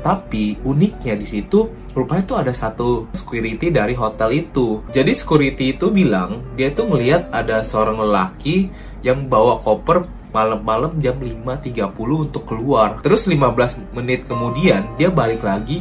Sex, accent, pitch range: male, native, 110-150 Hz